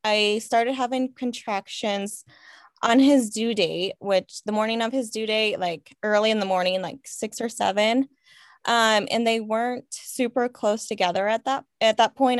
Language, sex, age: English, female, 10-29